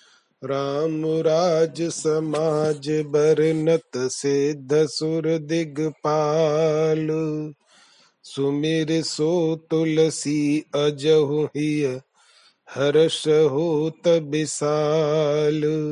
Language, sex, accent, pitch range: Hindi, male, native, 145-165 Hz